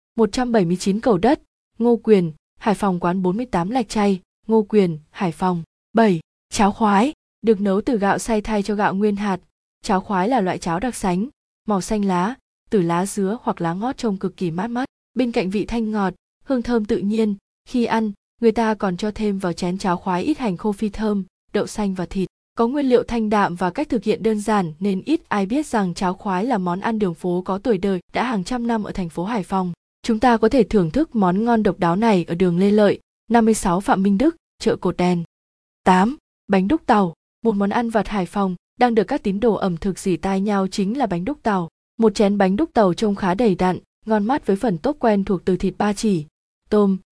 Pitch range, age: 185-225 Hz, 20-39